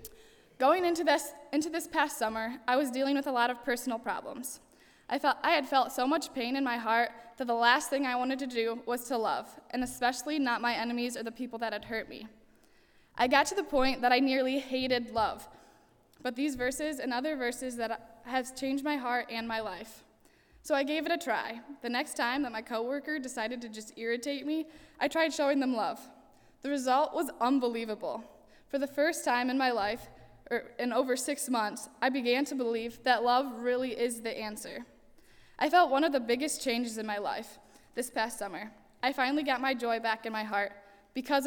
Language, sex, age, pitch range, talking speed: English, female, 10-29, 230-280 Hz, 210 wpm